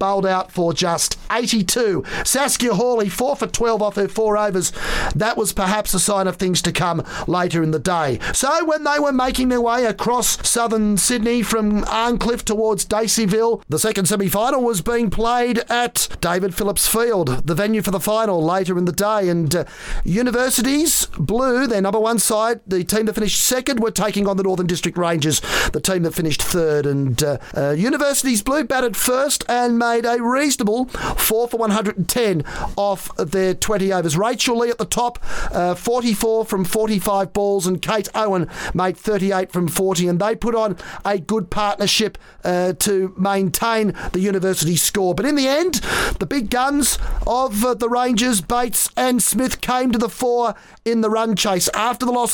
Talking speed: 180 wpm